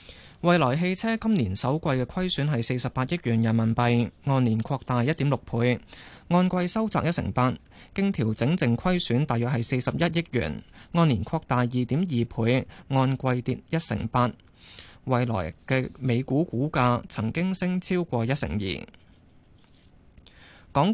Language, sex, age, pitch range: Chinese, male, 20-39, 115-165 Hz